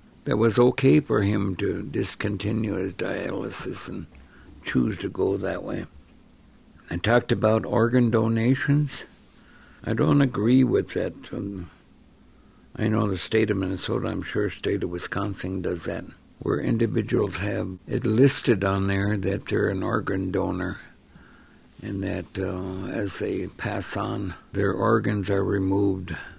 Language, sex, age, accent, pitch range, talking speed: English, male, 60-79, American, 95-110 Hz, 140 wpm